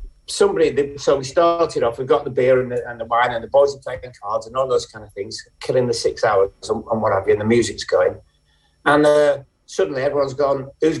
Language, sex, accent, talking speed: English, male, British, 250 wpm